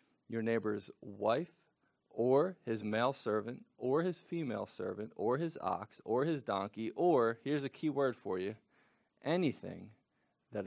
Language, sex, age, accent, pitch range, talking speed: English, male, 40-59, American, 110-145 Hz, 145 wpm